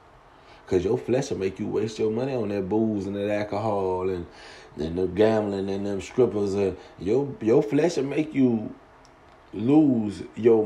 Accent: American